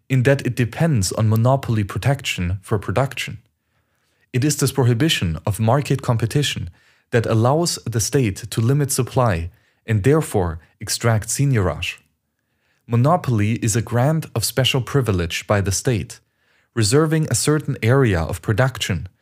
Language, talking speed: English, 135 wpm